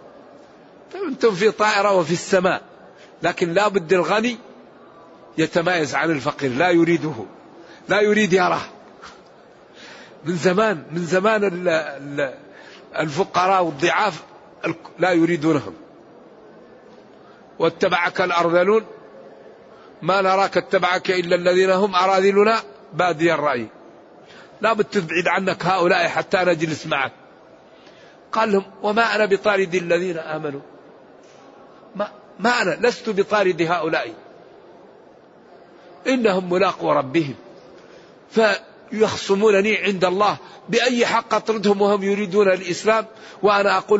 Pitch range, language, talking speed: 175-205 Hz, Arabic, 90 wpm